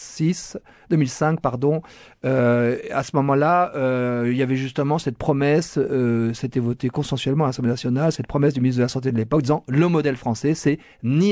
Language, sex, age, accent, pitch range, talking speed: French, male, 40-59, French, 125-155 Hz, 190 wpm